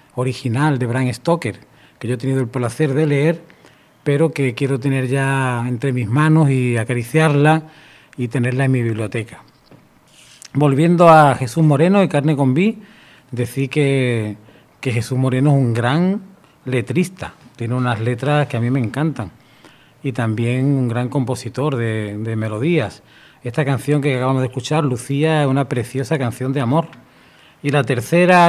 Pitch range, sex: 120-150 Hz, male